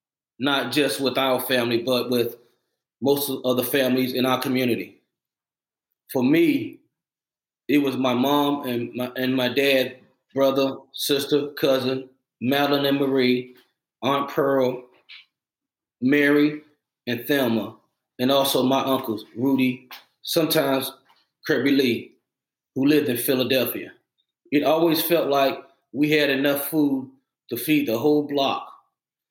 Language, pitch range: English, 125-145 Hz